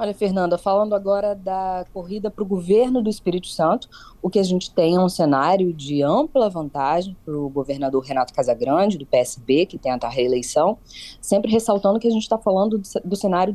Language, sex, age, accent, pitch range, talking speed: Portuguese, female, 20-39, Brazilian, 140-215 Hz, 190 wpm